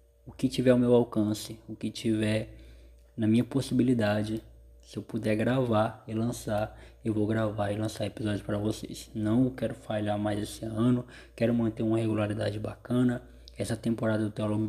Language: Portuguese